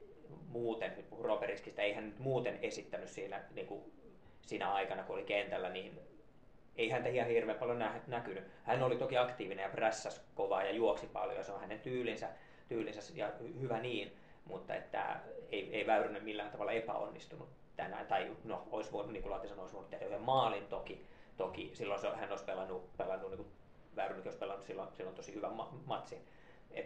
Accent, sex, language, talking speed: native, male, Finnish, 175 wpm